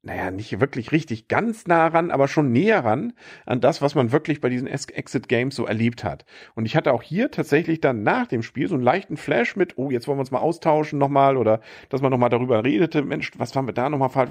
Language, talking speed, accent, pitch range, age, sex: German, 250 wpm, German, 120-145 Hz, 50-69, male